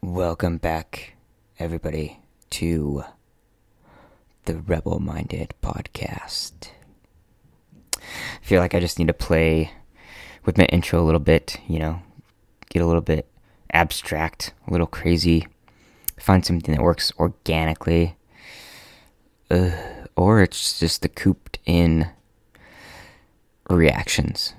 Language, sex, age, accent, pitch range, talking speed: English, male, 20-39, American, 80-95 Hz, 105 wpm